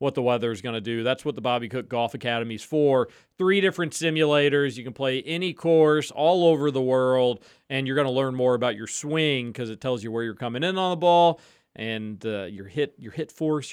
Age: 40-59